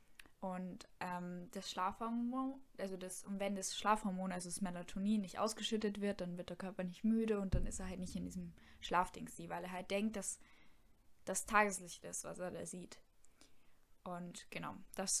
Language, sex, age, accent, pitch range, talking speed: German, female, 10-29, German, 185-210 Hz, 180 wpm